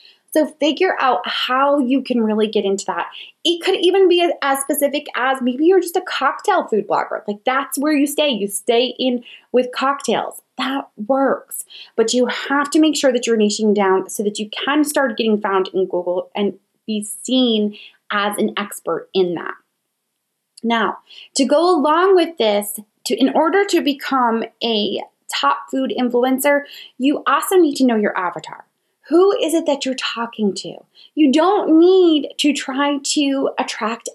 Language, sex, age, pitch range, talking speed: English, female, 20-39, 220-305 Hz, 175 wpm